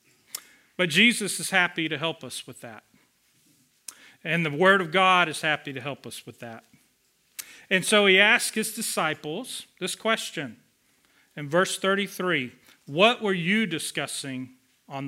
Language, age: English, 40-59